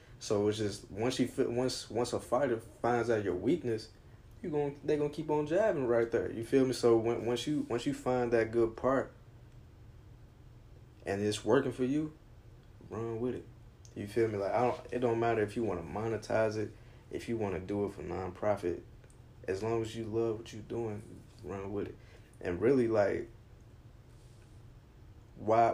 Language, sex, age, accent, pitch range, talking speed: English, male, 20-39, American, 100-120 Hz, 185 wpm